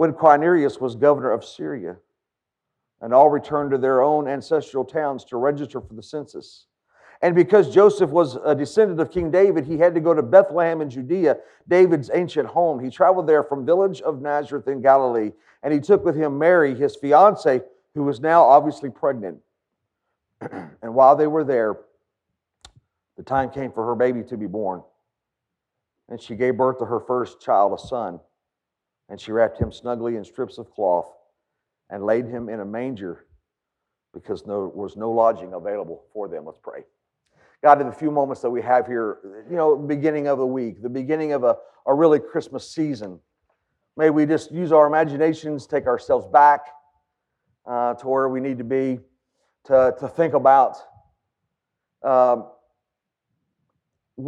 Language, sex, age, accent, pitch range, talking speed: English, male, 50-69, American, 125-160 Hz, 170 wpm